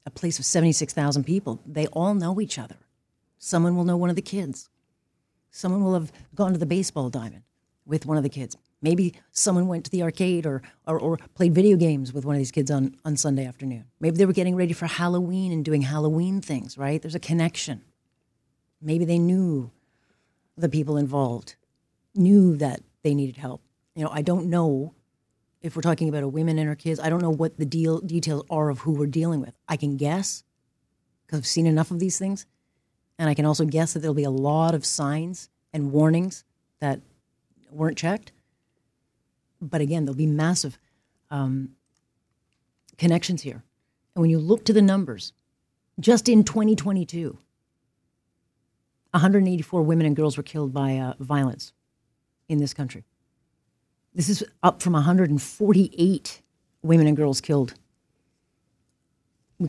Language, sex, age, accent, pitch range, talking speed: English, female, 40-59, American, 140-175 Hz, 170 wpm